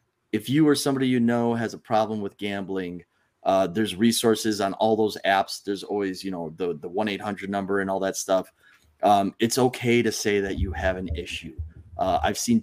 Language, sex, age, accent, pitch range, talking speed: English, male, 30-49, American, 95-120 Hz, 215 wpm